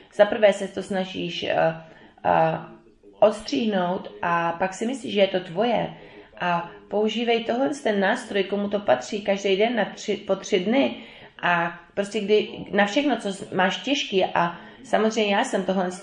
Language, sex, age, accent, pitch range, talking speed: English, female, 20-39, Czech, 165-205 Hz, 165 wpm